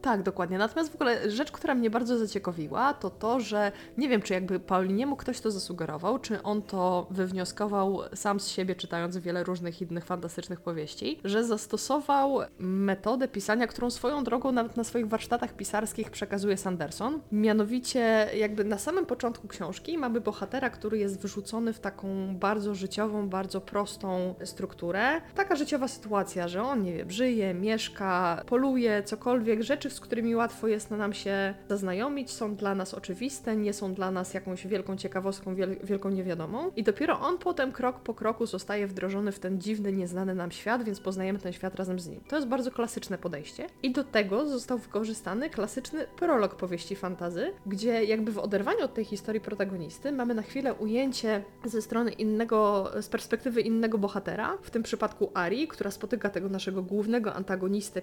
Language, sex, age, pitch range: Polish, female, 20-39, 190-235 Hz